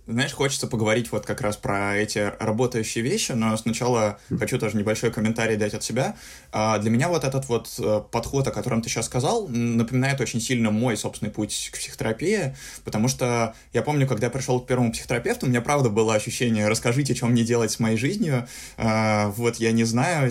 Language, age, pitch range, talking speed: Russian, 20-39, 110-130 Hz, 190 wpm